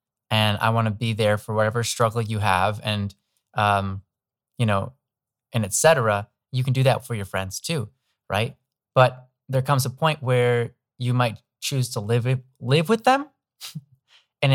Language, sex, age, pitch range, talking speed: English, male, 20-39, 110-130 Hz, 175 wpm